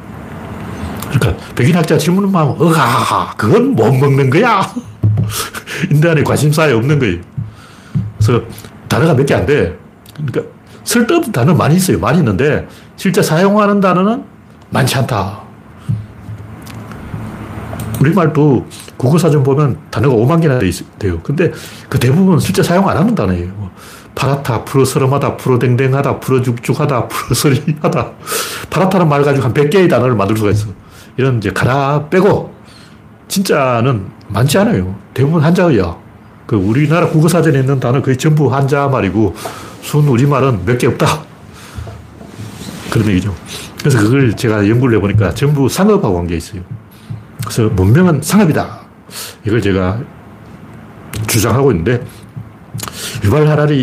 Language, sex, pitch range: Korean, male, 110-150 Hz